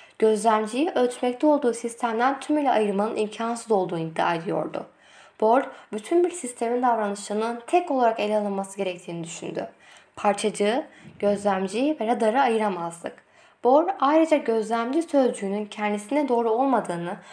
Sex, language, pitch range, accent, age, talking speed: female, Turkish, 205-260 Hz, native, 10-29, 115 wpm